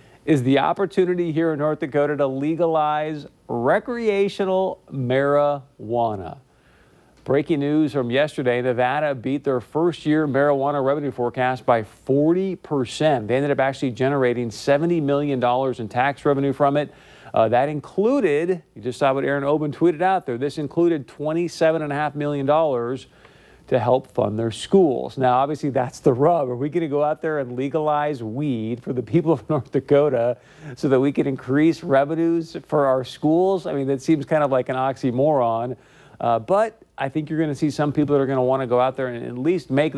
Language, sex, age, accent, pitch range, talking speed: English, male, 50-69, American, 130-155 Hz, 175 wpm